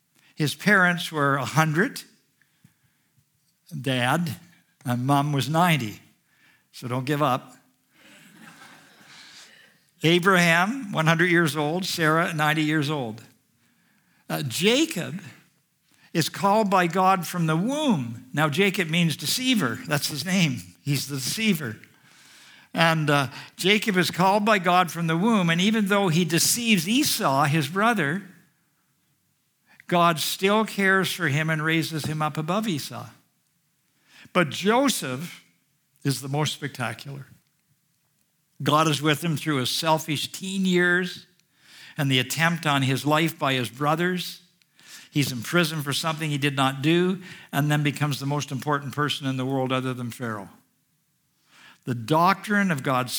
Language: English